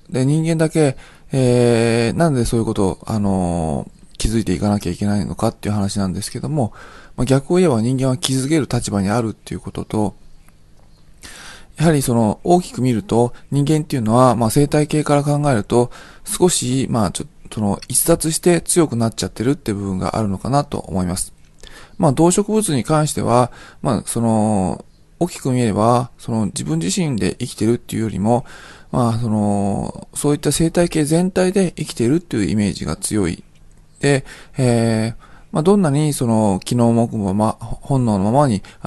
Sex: male